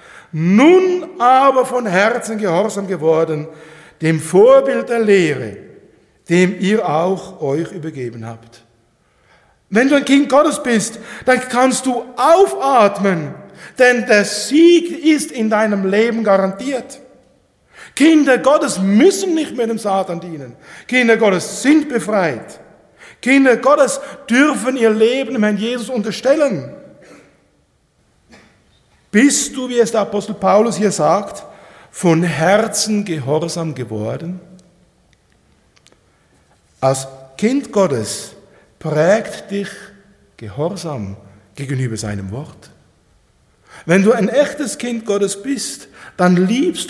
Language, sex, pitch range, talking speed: German, male, 170-255 Hz, 110 wpm